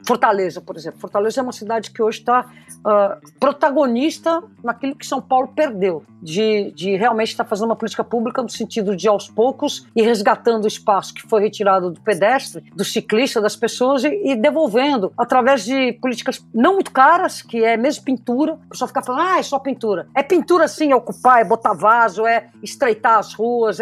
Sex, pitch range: female, 220-280 Hz